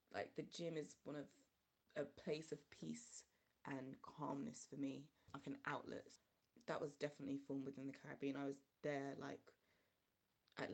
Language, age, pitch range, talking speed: English, 20-39, 140-165 Hz, 160 wpm